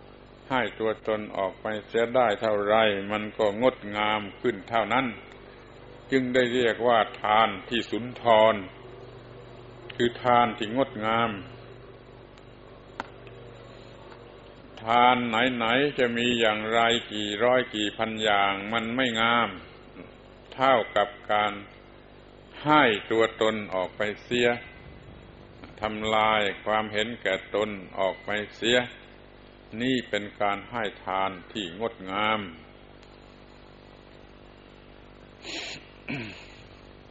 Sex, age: male, 60-79